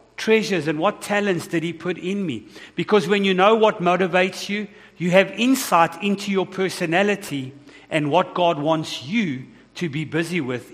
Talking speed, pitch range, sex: 175 wpm, 150-190 Hz, male